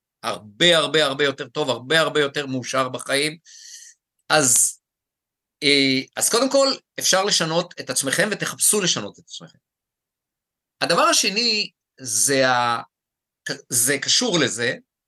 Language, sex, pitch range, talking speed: Hebrew, male, 140-200 Hz, 110 wpm